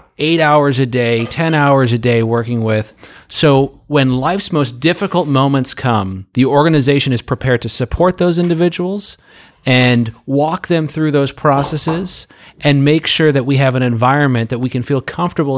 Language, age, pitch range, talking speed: English, 30-49, 125-150 Hz, 170 wpm